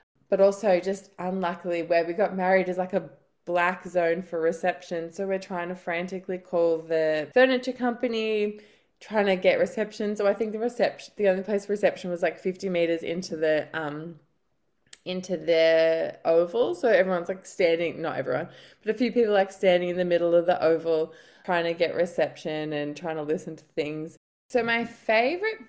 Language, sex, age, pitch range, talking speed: English, female, 20-39, 160-195 Hz, 185 wpm